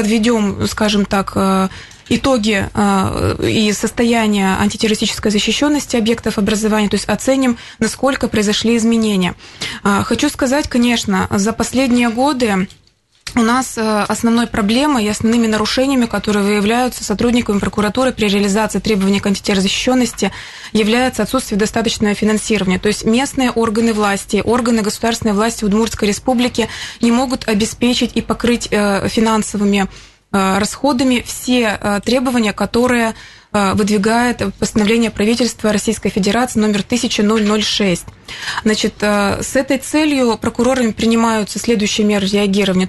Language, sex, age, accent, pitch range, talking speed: Russian, female, 20-39, native, 205-235 Hz, 110 wpm